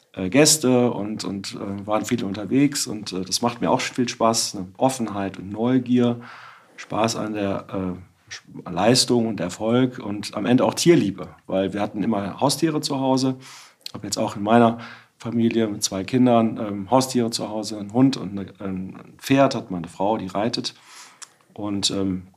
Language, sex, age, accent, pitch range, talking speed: German, male, 40-59, German, 105-125 Hz, 155 wpm